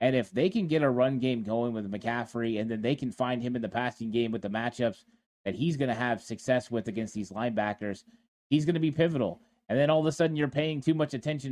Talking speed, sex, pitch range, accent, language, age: 260 wpm, male, 115-145 Hz, American, English, 30-49